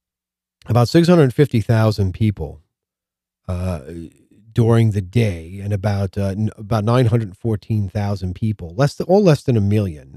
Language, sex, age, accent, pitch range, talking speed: English, male, 40-59, American, 95-115 Hz, 155 wpm